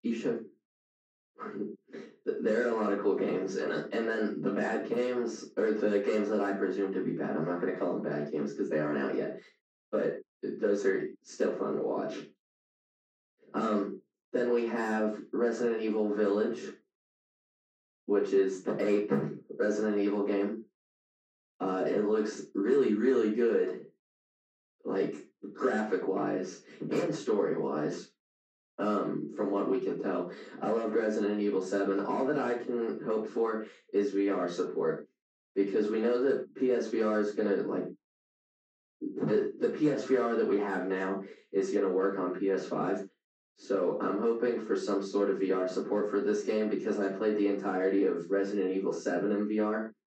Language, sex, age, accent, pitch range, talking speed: English, male, 20-39, American, 95-110 Hz, 160 wpm